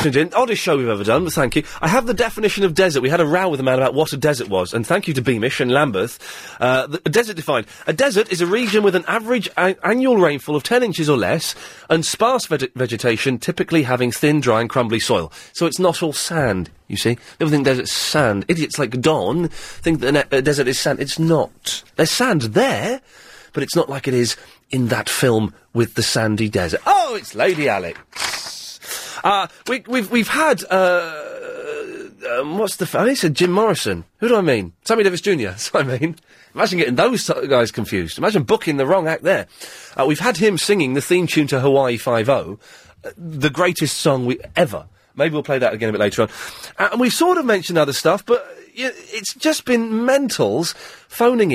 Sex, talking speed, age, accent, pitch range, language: male, 220 wpm, 30-49, British, 130-210 Hz, English